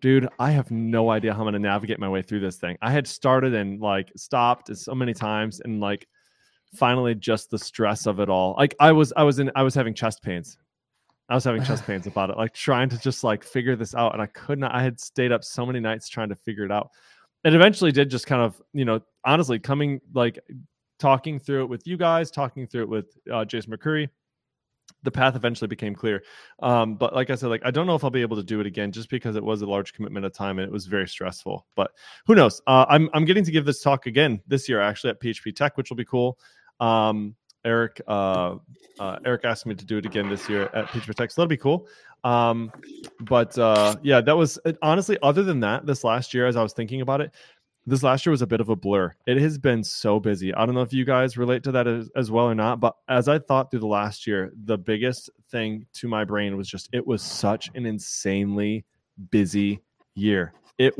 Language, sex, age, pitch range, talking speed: English, male, 20-39, 105-135 Hz, 245 wpm